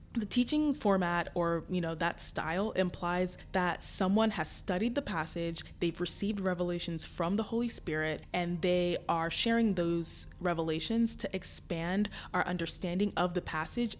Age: 20-39